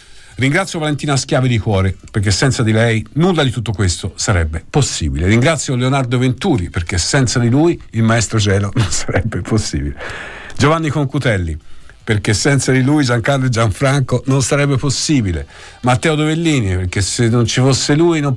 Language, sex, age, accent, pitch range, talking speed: Italian, male, 50-69, native, 100-135 Hz, 160 wpm